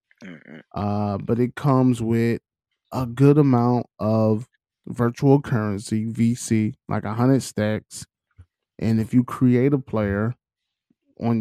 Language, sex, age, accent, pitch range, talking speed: English, male, 20-39, American, 110-145 Hz, 120 wpm